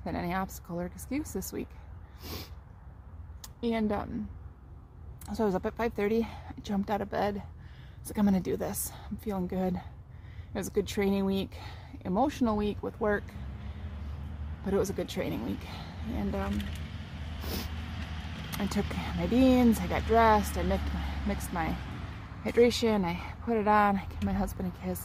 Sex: female